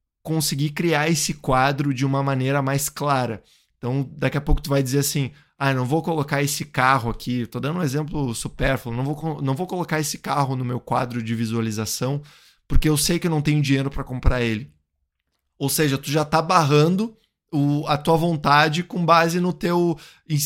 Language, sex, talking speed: Portuguese, male, 195 wpm